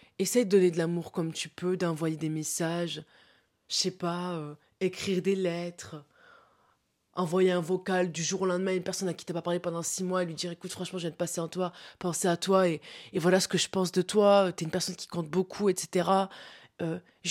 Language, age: French, 20-39